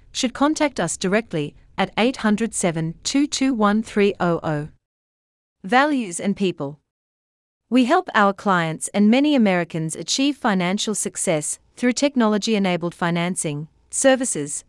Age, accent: 40-59, Australian